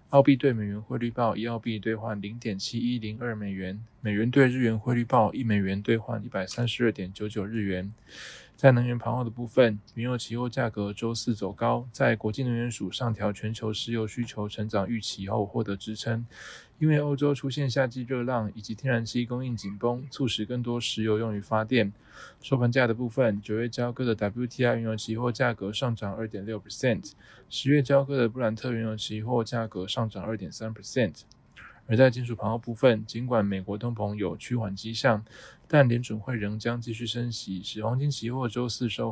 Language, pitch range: Chinese, 110-125 Hz